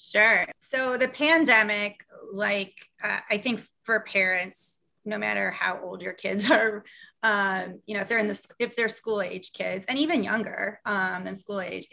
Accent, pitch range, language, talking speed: American, 190-220 Hz, English, 180 wpm